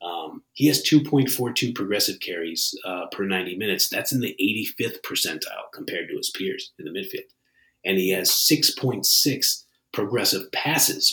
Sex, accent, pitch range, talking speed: male, American, 95-145 Hz, 150 wpm